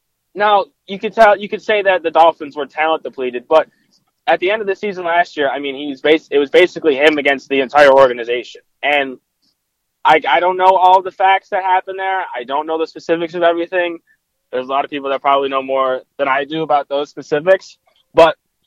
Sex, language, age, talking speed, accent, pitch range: male, English, 20-39, 220 wpm, American, 135-185 Hz